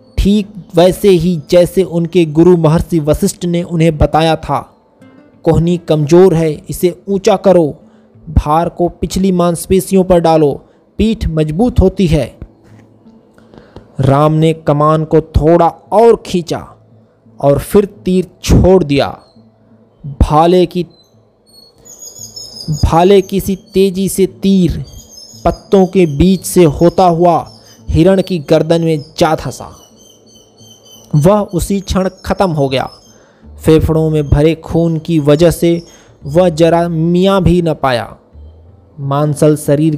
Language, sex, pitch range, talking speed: Hindi, male, 140-175 Hz, 120 wpm